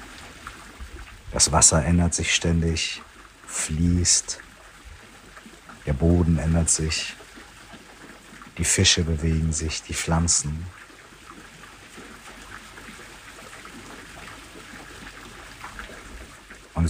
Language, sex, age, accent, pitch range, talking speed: German, male, 50-69, German, 80-95 Hz, 60 wpm